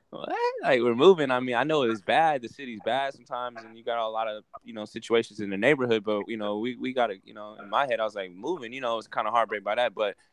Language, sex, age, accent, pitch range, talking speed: English, male, 10-29, American, 100-115 Hz, 300 wpm